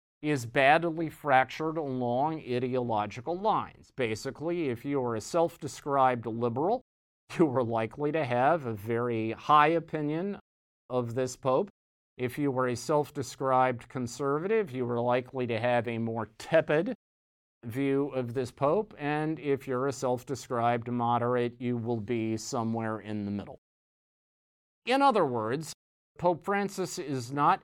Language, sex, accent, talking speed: English, male, American, 135 wpm